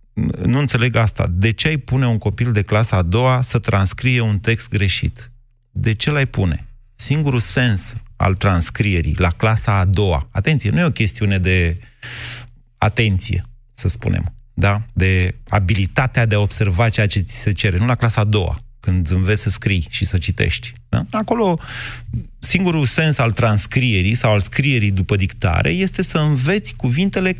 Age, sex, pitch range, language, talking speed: 30-49, male, 105-130 Hz, Romanian, 165 wpm